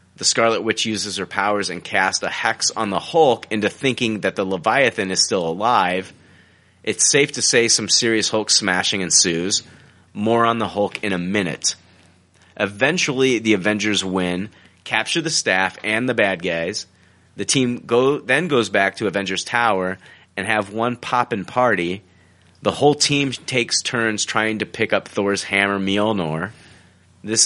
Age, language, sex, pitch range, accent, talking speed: 30-49, English, male, 90-115 Hz, American, 160 wpm